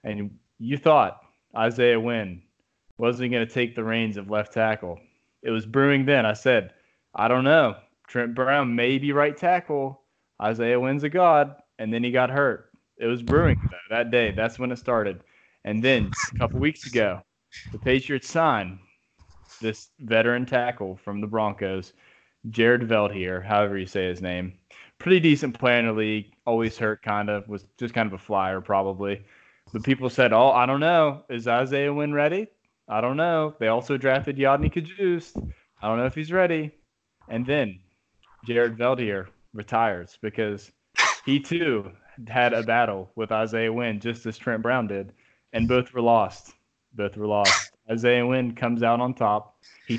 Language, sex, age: English, male, 20-39